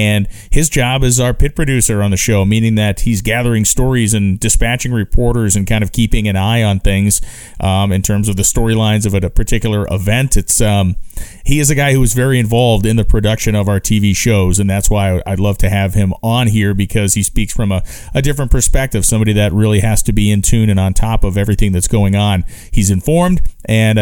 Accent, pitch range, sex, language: American, 95-115 Hz, male, English